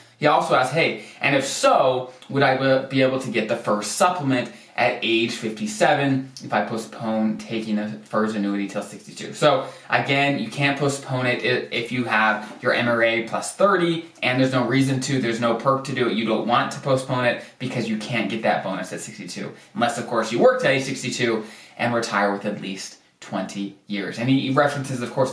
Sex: male